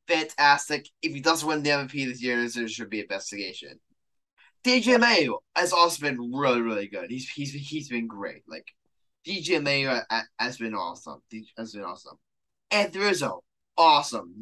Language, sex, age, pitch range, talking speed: English, male, 10-29, 125-200 Hz, 155 wpm